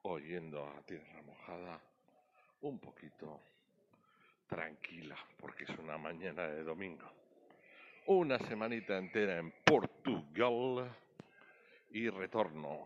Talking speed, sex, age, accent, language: 95 wpm, male, 60-79, Spanish, Spanish